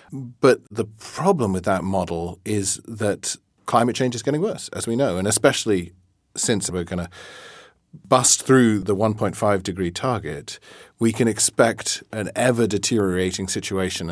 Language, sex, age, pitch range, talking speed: English, male, 40-59, 95-115 Hz, 140 wpm